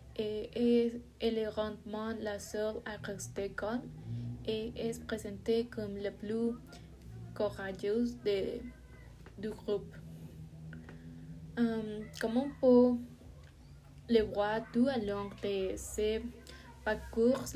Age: 20-39